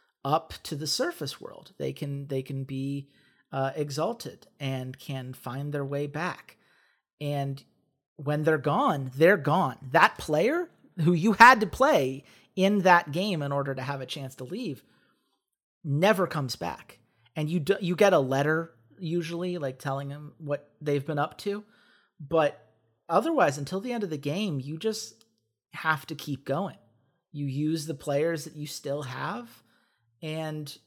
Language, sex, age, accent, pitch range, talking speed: English, male, 40-59, American, 135-190 Hz, 165 wpm